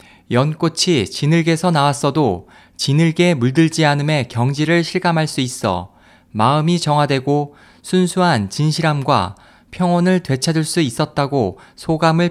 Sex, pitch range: male, 125-170 Hz